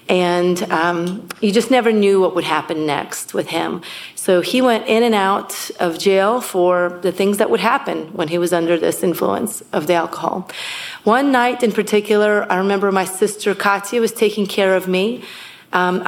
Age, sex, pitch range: 30-49, female, 180-220 Hz